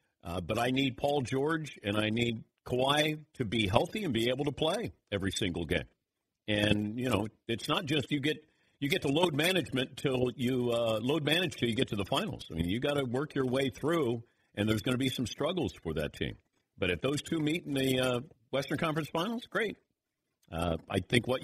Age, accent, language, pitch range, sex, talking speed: 50-69, American, English, 100-140 Hz, male, 225 wpm